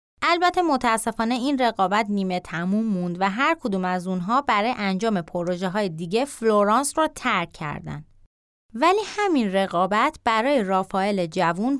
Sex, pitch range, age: female, 190-255 Hz, 30-49